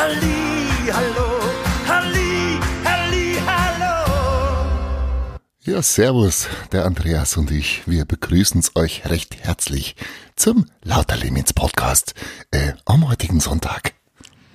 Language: German